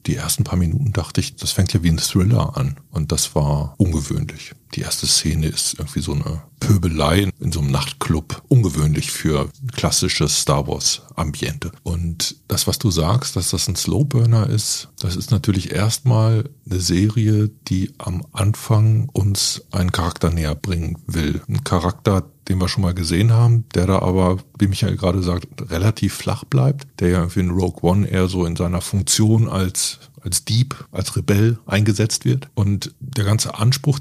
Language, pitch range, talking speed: German, 90-125 Hz, 175 wpm